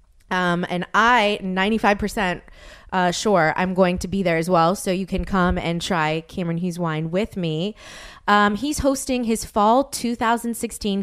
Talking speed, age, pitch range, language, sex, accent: 165 wpm, 20-39, 180-225 Hz, English, female, American